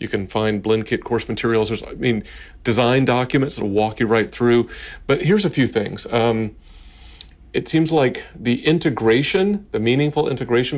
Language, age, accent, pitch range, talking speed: English, 40-59, American, 100-125 Hz, 165 wpm